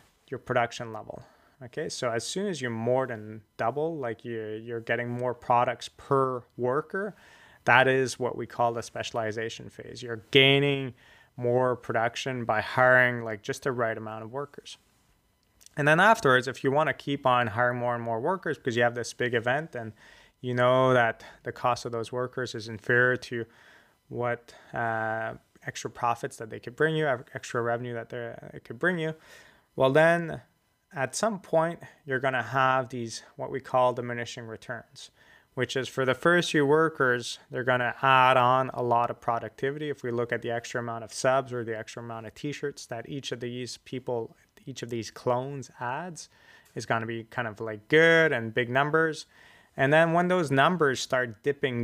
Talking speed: 190 wpm